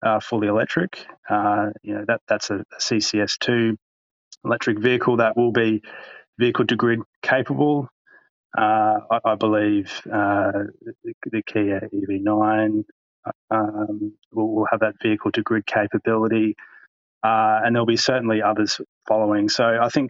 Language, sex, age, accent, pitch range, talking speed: English, male, 20-39, Australian, 105-115 Hz, 130 wpm